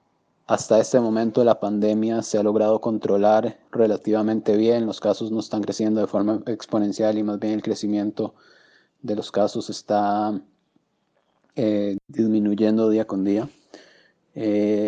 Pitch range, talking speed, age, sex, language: 105-115 Hz, 135 wpm, 20-39, male, Spanish